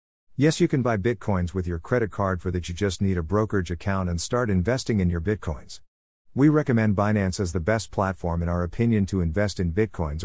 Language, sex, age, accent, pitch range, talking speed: English, male, 50-69, American, 85-110 Hz, 215 wpm